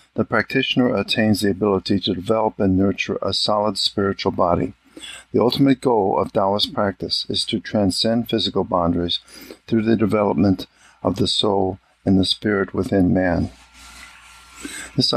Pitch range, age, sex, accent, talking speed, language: 95-105 Hz, 50-69, male, American, 140 wpm, English